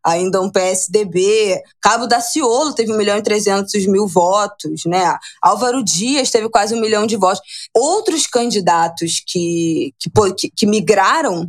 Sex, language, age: female, Portuguese, 20-39